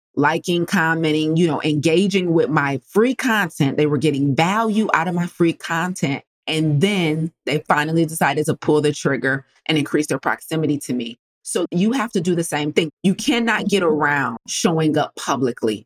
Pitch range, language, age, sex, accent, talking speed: 145-185 Hz, English, 30-49, female, American, 180 wpm